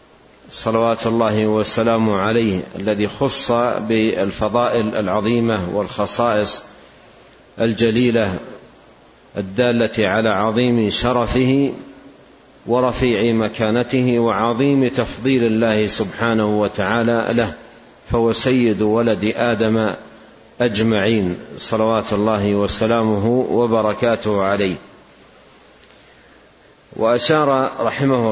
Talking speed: 70 wpm